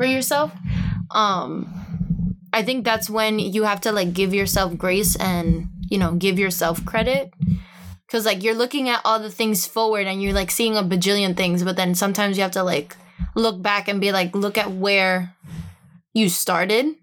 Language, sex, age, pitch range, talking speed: English, female, 20-39, 185-220 Hz, 185 wpm